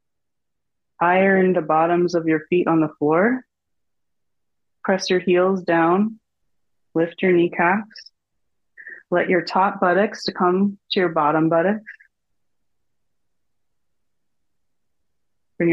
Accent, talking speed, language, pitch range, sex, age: American, 105 wpm, English, 160-195 Hz, female, 20-39